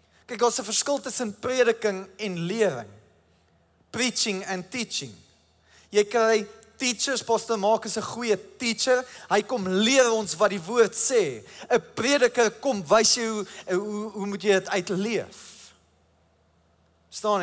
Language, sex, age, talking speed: English, male, 20-39, 145 wpm